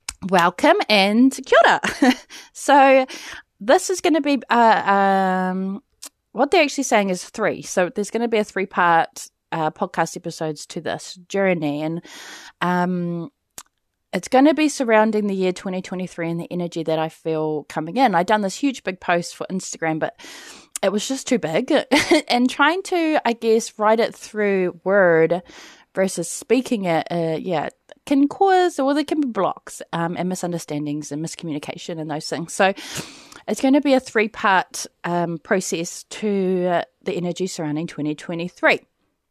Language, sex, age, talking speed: English, female, 20-39, 160 wpm